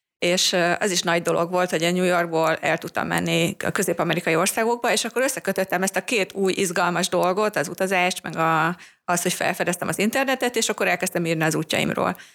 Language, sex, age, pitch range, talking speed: Hungarian, female, 30-49, 170-195 Hz, 195 wpm